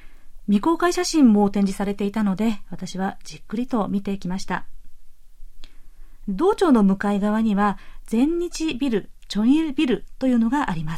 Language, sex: Japanese, female